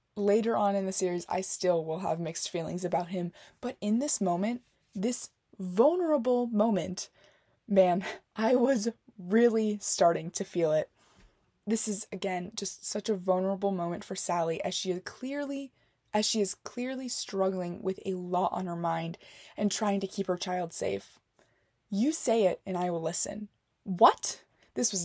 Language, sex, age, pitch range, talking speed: English, female, 20-39, 185-245 Hz, 170 wpm